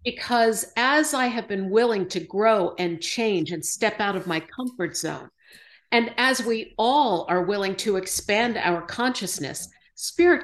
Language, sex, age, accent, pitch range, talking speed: English, female, 50-69, American, 190-260 Hz, 160 wpm